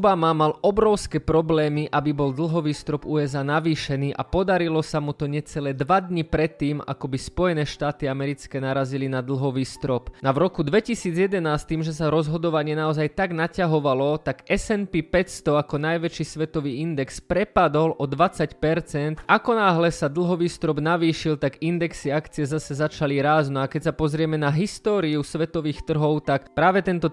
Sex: male